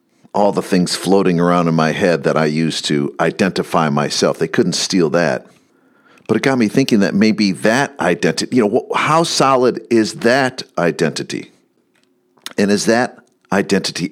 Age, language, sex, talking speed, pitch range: 50-69, English, male, 160 wpm, 80-105 Hz